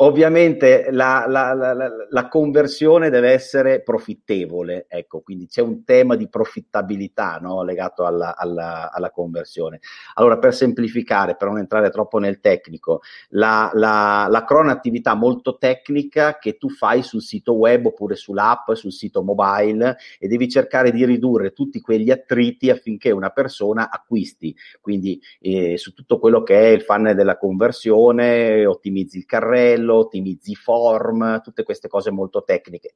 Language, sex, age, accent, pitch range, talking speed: Italian, male, 40-59, native, 100-130 Hz, 150 wpm